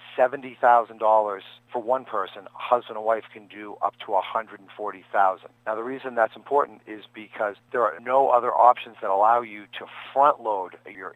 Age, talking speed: 40-59, 165 wpm